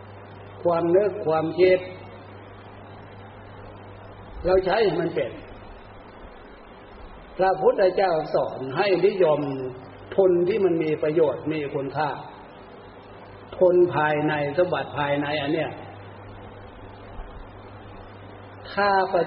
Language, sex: Thai, male